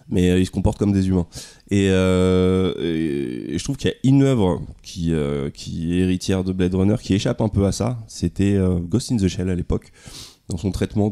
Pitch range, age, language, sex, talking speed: 90-105 Hz, 20-39, French, male, 235 wpm